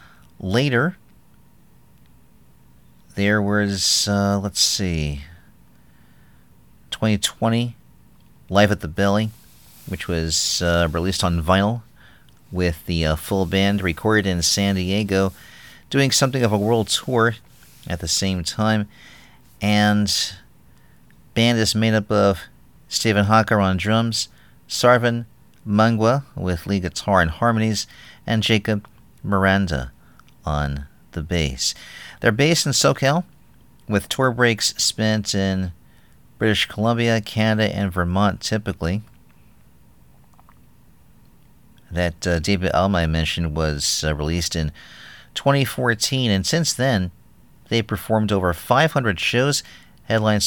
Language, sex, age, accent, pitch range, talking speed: English, male, 40-59, American, 85-110 Hz, 110 wpm